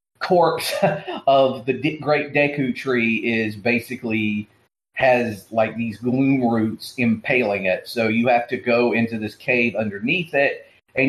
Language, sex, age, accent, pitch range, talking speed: English, male, 40-59, American, 115-145 Hz, 140 wpm